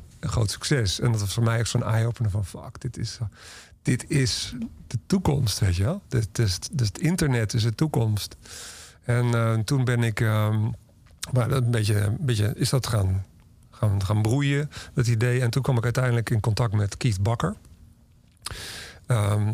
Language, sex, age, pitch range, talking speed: Dutch, male, 50-69, 105-125 Hz, 190 wpm